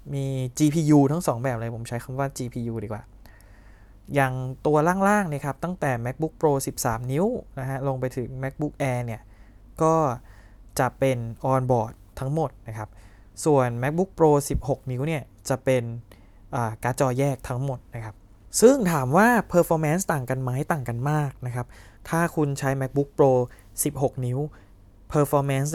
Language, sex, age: Thai, male, 20-39